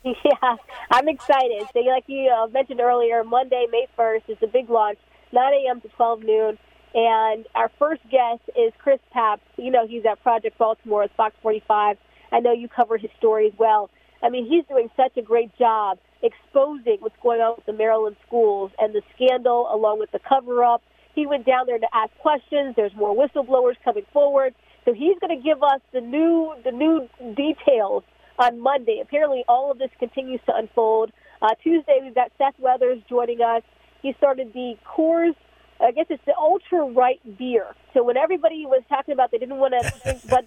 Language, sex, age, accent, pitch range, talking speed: English, female, 40-59, American, 225-280 Hz, 195 wpm